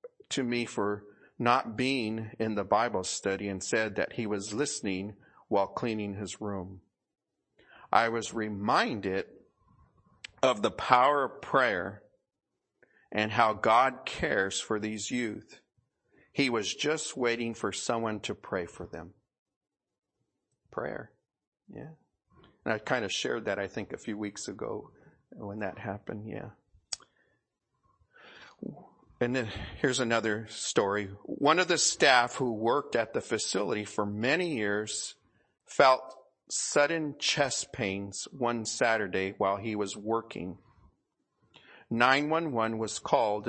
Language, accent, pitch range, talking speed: English, American, 105-120 Hz, 125 wpm